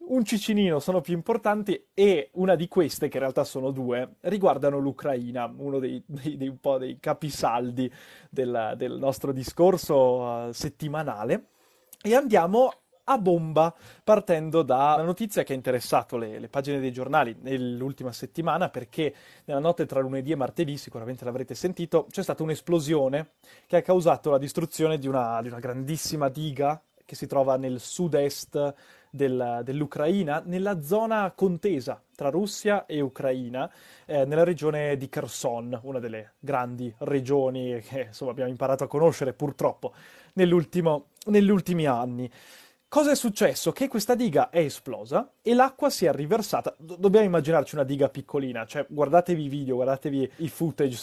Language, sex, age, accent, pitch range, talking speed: Italian, male, 20-39, native, 130-175 Hz, 145 wpm